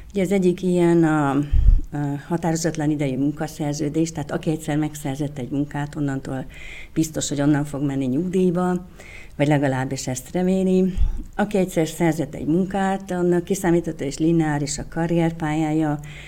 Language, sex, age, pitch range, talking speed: Hungarian, female, 60-79, 150-175 Hz, 135 wpm